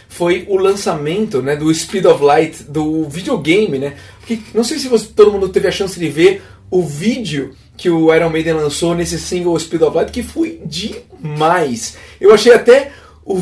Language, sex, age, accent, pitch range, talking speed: Portuguese, male, 30-49, Brazilian, 135-215 Hz, 180 wpm